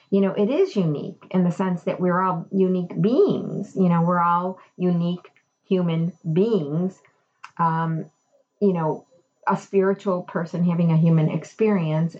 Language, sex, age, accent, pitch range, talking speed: English, female, 40-59, American, 140-180 Hz, 150 wpm